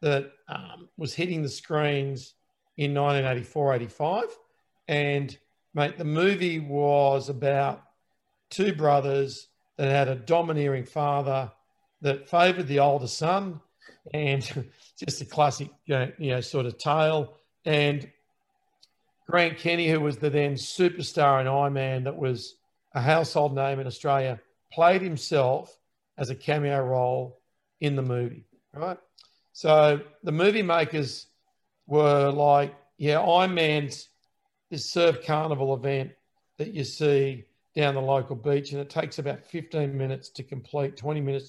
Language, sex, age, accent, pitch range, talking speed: English, male, 50-69, Australian, 135-165 Hz, 135 wpm